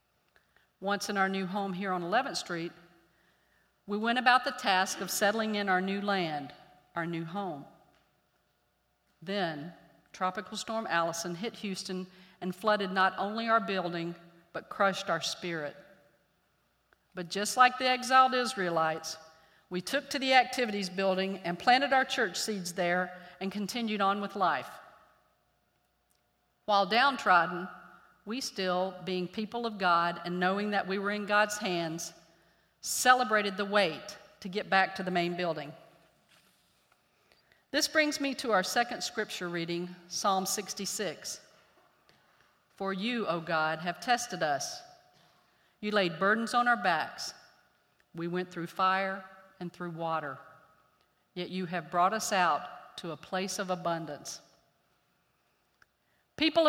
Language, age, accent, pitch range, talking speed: English, 50-69, American, 175-210 Hz, 140 wpm